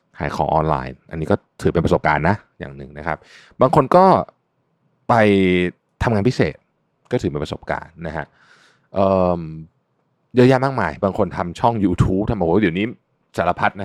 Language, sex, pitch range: Thai, male, 80-115 Hz